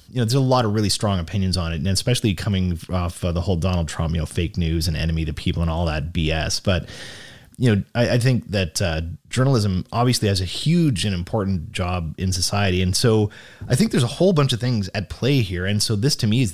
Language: English